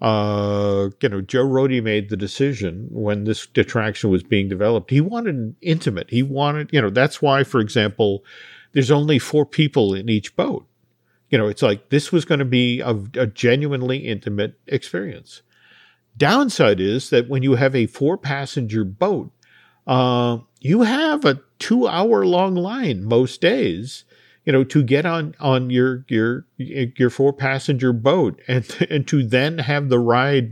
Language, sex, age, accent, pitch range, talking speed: English, male, 50-69, American, 115-145 Hz, 170 wpm